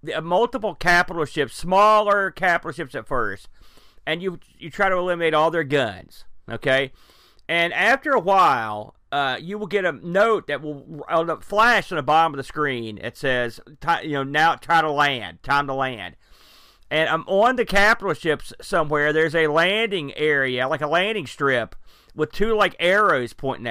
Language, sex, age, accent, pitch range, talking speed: English, male, 40-59, American, 145-205 Hz, 185 wpm